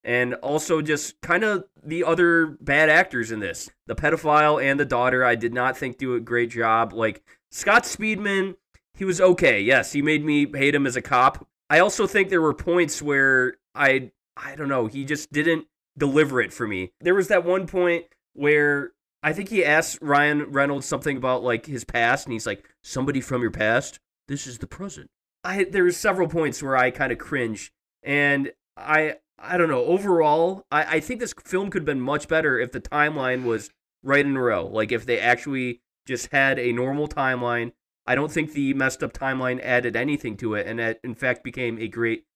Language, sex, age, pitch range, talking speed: English, male, 20-39, 115-155 Hz, 205 wpm